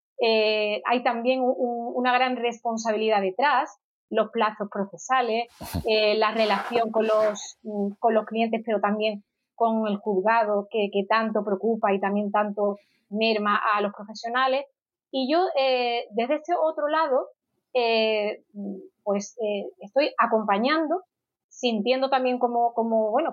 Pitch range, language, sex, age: 220-265 Hz, Spanish, female, 30-49